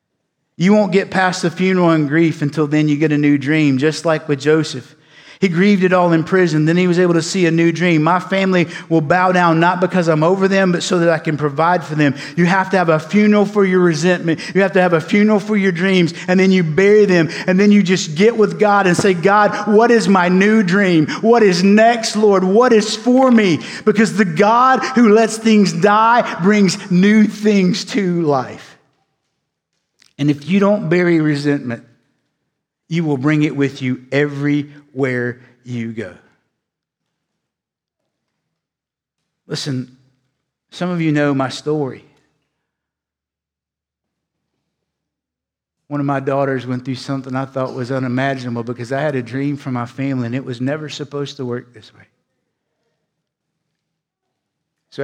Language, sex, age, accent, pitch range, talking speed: English, male, 50-69, American, 135-190 Hz, 175 wpm